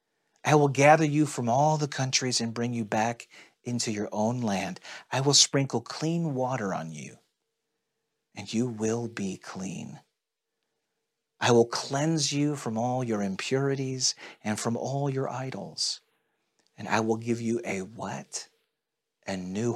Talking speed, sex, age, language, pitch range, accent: 150 wpm, male, 40-59, English, 110-140 Hz, American